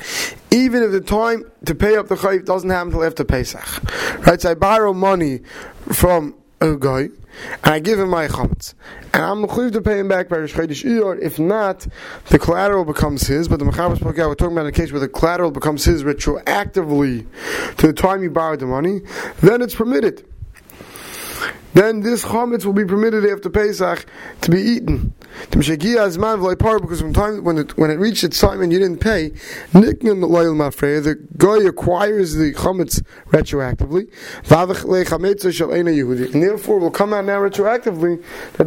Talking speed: 165 wpm